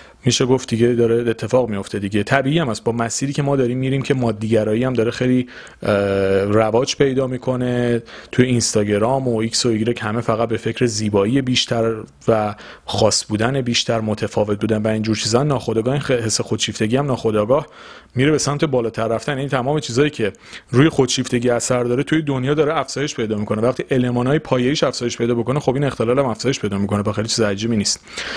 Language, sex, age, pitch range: Persian, male, 30-49, 115-145 Hz